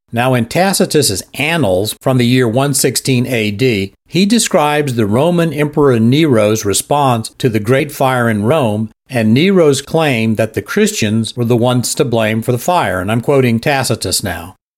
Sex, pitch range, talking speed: male, 115-160 Hz, 165 wpm